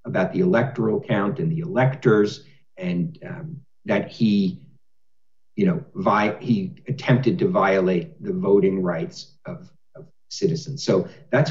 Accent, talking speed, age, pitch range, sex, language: American, 135 wpm, 50-69, 125-165 Hz, male, English